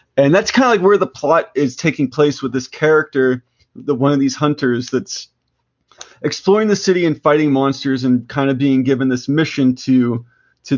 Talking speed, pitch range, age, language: 195 wpm, 125-145 Hz, 30-49, English